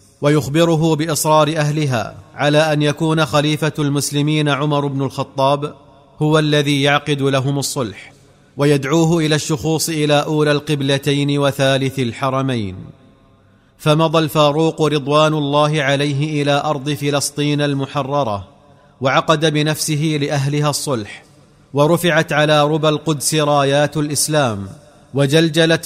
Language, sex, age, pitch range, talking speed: Arabic, male, 40-59, 140-155 Hz, 100 wpm